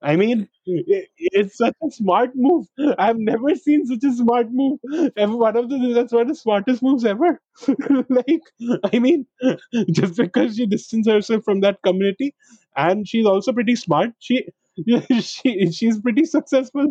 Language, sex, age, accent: English, male, 20-39, Indian